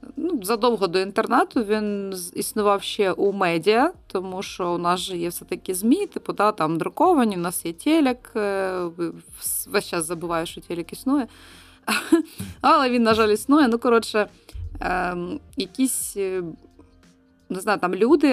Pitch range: 175-220 Hz